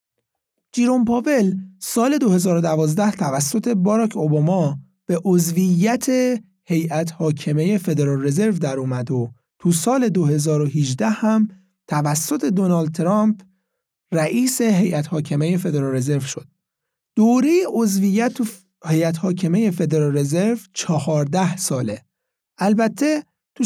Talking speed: 100 wpm